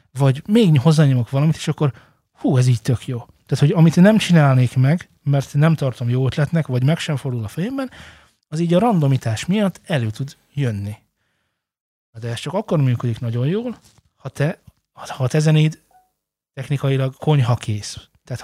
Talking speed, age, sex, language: 175 wpm, 20-39, male, Hungarian